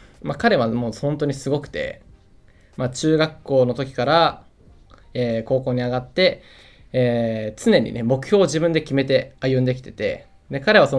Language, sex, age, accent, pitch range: Japanese, male, 20-39, native, 120-165 Hz